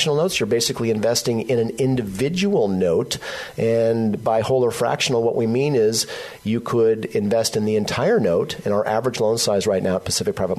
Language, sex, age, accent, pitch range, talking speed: English, male, 40-59, American, 95-125 Hz, 195 wpm